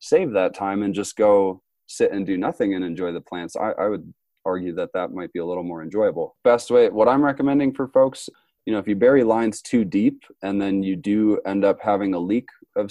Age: 20-39